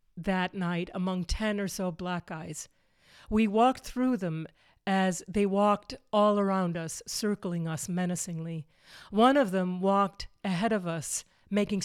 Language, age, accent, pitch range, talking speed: English, 40-59, American, 175-215 Hz, 145 wpm